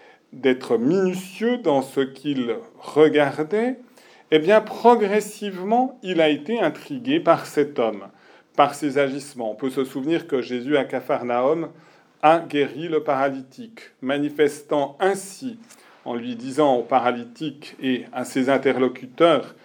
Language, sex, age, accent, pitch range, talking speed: French, male, 40-59, French, 130-170 Hz, 130 wpm